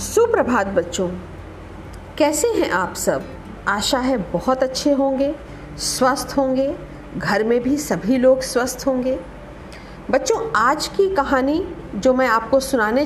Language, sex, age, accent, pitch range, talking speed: Hindi, female, 50-69, native, 230-315 Hz, 130 wpm